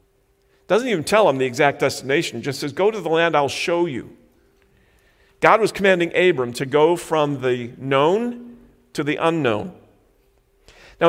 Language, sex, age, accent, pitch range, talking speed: English, male, 50-69, American, 130-170 Hz, 155 wpm